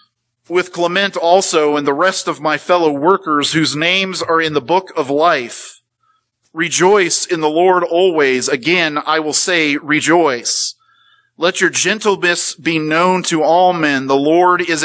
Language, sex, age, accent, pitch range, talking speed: English, male, 40-59, American, 125-170 Hz, 160 wpm